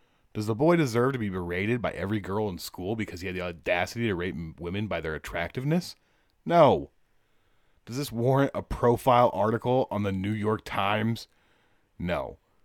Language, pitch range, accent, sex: English, 95-130 Hz, American, male